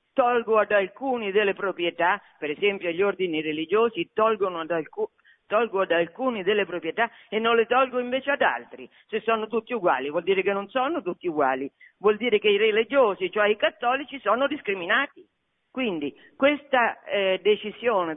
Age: 50-69